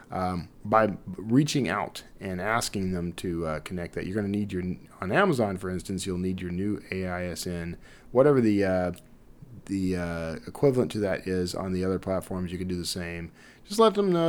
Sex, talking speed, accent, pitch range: male, 195 wpm, American, 90-125 Hz